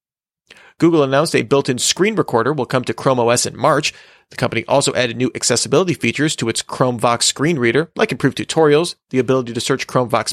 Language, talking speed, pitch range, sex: English, 190 wpm, 125-155 Hz, male